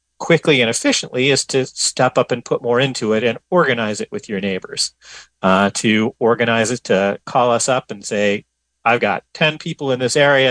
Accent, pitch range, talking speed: American, 110-150 Hz, 200 wpm